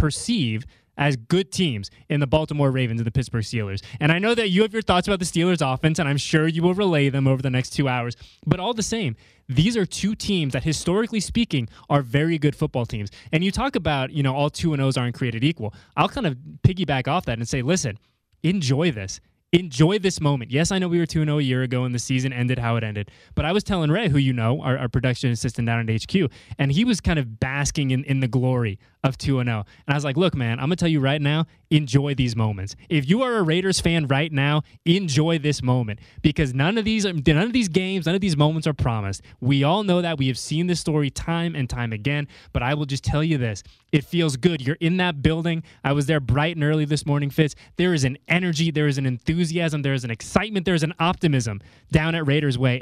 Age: 20-39